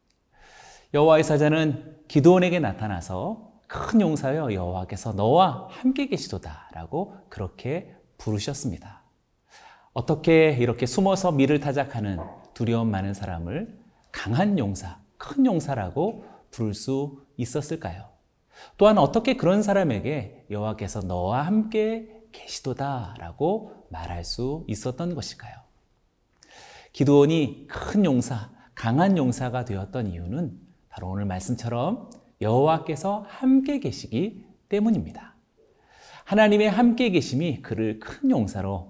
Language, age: Korean, 40-59